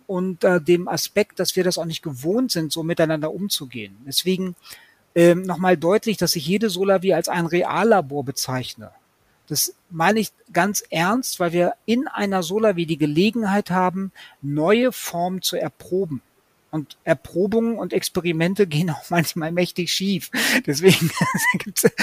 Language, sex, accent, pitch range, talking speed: German, male, German, 160-195 Hz, 145 wpm